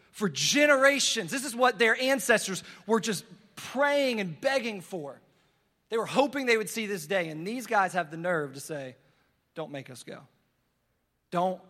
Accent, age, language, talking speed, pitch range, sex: American, 20-39, English, 175 wpm, 180-235 Hz, male